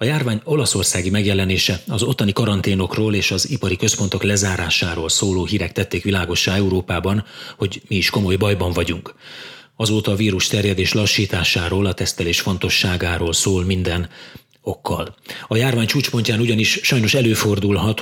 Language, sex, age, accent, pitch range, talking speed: English, male, 30-49, Finnish, 95-110 Hz, 135 wpm